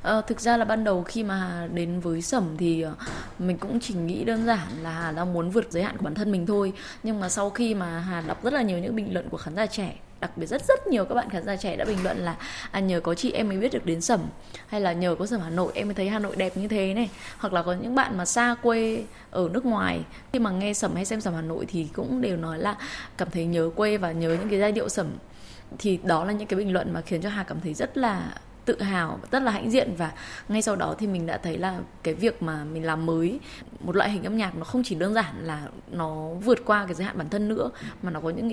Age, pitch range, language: 20-39, 175-225 Hz, Vietnamese